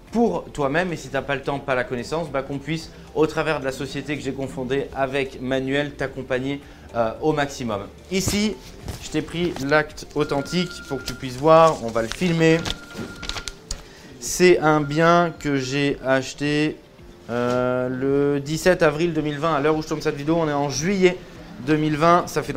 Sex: male